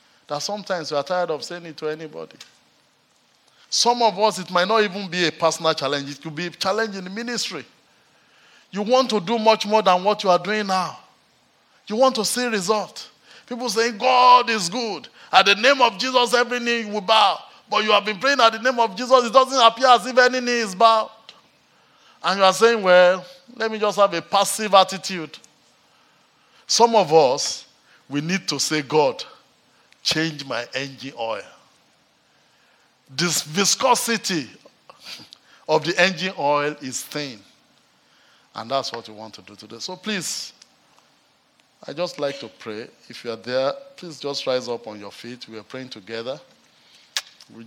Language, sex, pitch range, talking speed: English, male, 140-220 Hz, 180 wpm